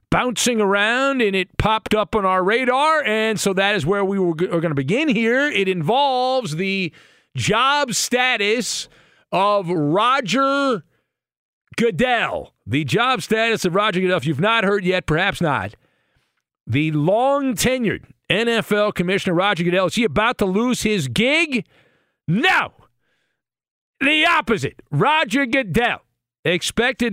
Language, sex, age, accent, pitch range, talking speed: English, male, 50-69, American, 160-230 Hz, 135 wpm